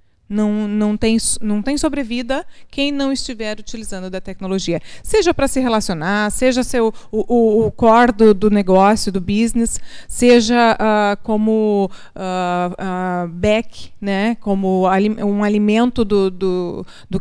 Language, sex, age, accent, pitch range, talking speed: Portuguese, female, 30-49, Brazilian, 190-230 Hz, 135 wpm